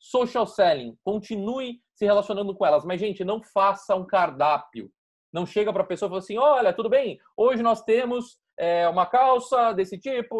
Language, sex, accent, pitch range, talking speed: Portuguese, male, Brazilian, 175-235 Hz, 185 wpm